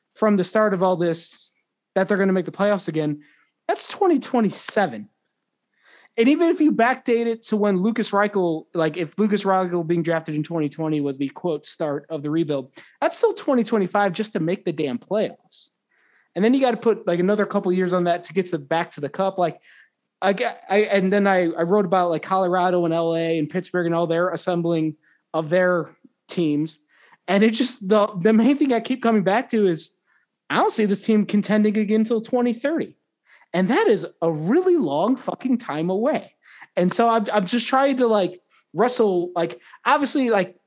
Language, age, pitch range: English, 20-39, 165-220 Hz